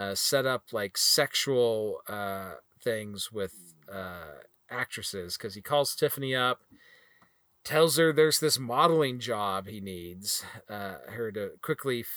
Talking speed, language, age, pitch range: 135 wpm, English, 40-59, 115-150 Hz